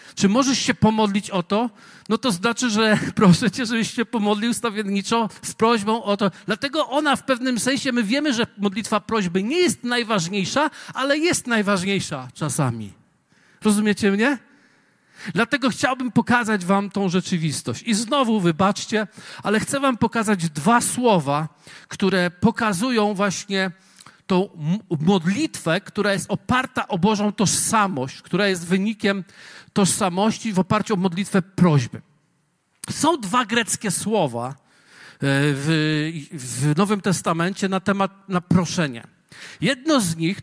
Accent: native